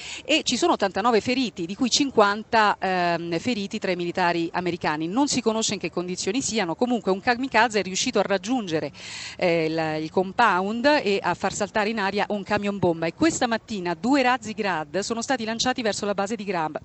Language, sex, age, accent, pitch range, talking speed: Italian, female, 40-59, native, 175-230 Hz, 195 wpm